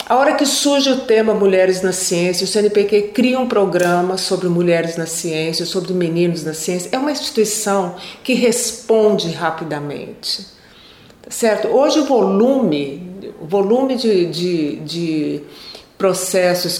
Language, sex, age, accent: Portuguese, female, 40-59, Brazilian